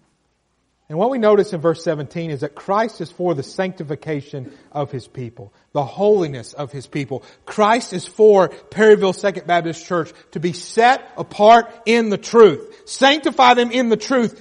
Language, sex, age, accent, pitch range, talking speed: English, male, 40-59, American, 175-245 Hz, 170 wpm